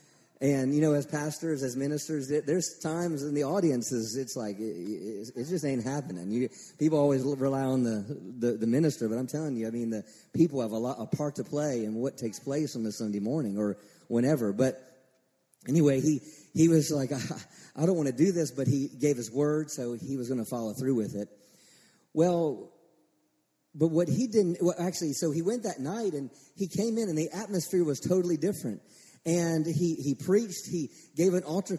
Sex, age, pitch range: male, 40-59, 130-180 Hz